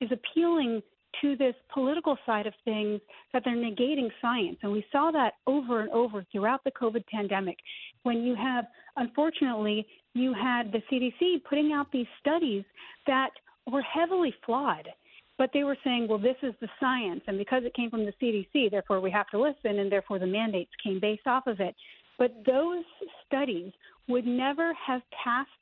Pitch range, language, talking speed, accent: 215-275 Hz, English, 180 wpm, American